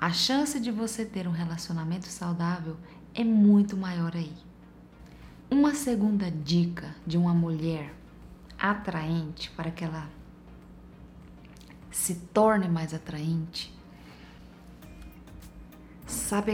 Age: 20-39